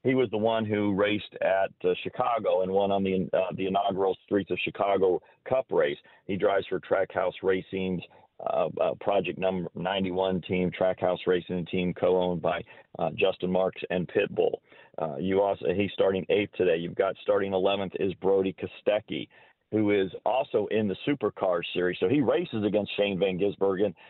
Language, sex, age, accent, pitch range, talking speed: English, male, 40-59, American, 95-105 Hz, 180 wpm